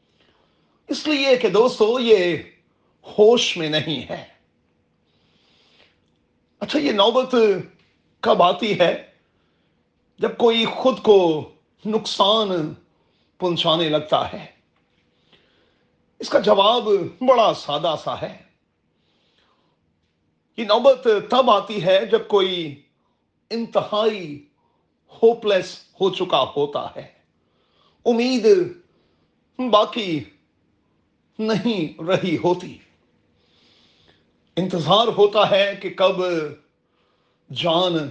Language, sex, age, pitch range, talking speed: Urdu, male, 40-59, 150-220 Hz, 85 wpm